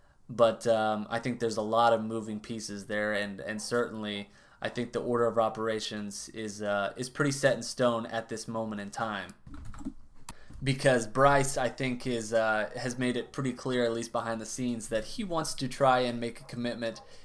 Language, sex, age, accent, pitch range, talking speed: English, male, 20-39, American, 110-130 Hz, 200 wpm